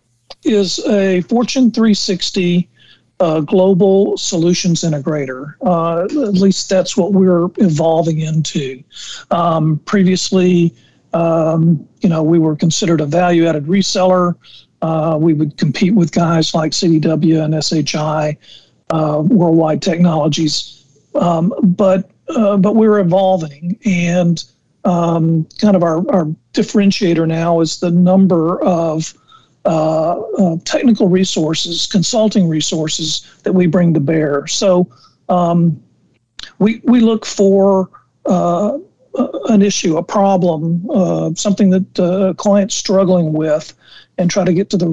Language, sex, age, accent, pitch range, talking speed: English, male, 50-69, American, 160-190 Hz, 125 wpm